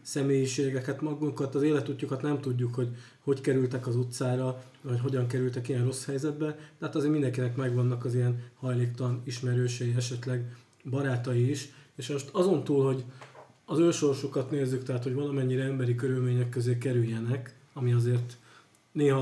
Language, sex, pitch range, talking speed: Hungarian, male, 125-140 Hz, 145 wpm